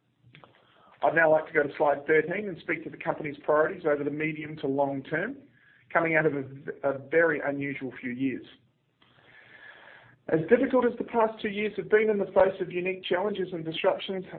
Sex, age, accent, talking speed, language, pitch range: male, 40-59, Australian, 190 wpm, English, 135-175 Hz